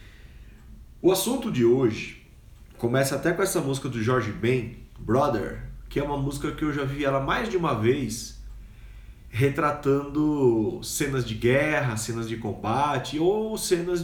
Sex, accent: male, Brazilian